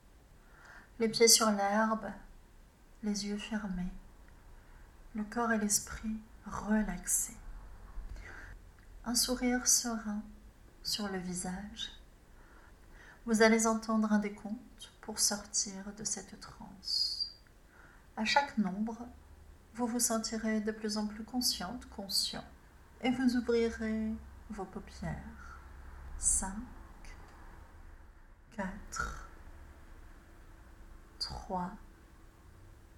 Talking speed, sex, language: 85 wpm, female, French